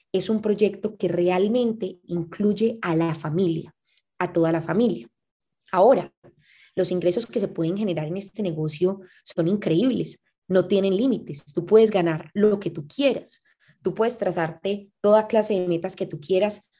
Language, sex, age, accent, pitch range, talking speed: Spanish, female, 20-39, Colombian, 170-210 Hz, 160 wpm